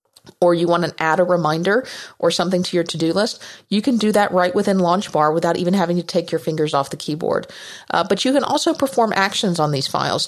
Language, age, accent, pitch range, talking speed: English, 40-59, American, 160-200 Hz, 235 wpm